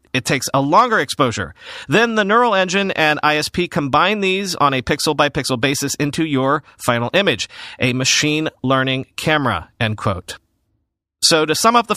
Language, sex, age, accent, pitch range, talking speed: English, male, 40-59, American, 125-175 Hz, 160 wpm